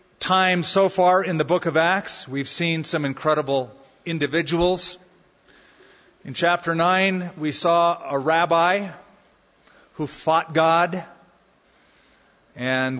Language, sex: English, male